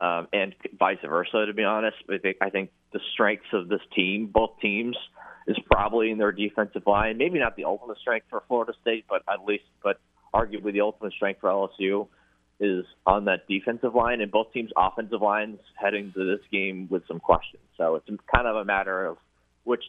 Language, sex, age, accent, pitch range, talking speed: English, male, 30-49, American, 85-110 Hz, 195 wpm